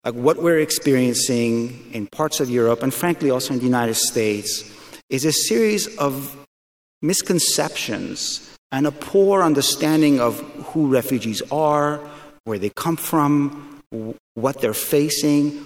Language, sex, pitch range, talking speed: English, male, 110-140 Hz, 135 wpm